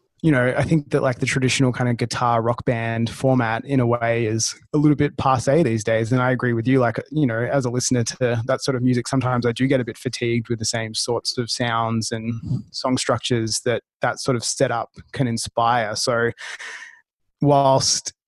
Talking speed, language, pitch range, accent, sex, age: 215 wpm, English, 115-130 Hz, Australian, male, 20-39